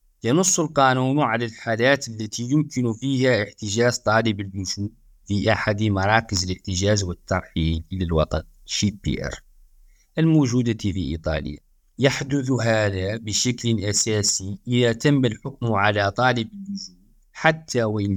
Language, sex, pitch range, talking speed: Arabic, male, 95-125 Hz, 110 wpm